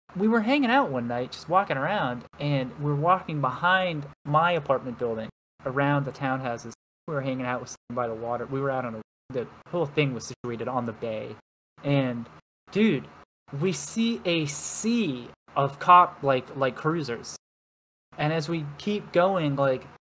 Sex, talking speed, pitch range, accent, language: male, 175 wpm, 130-170 Hz, American, English